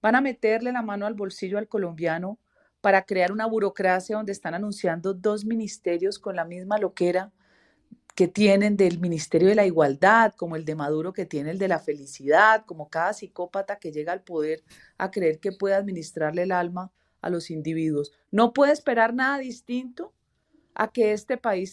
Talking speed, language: 180 wpm, Spanish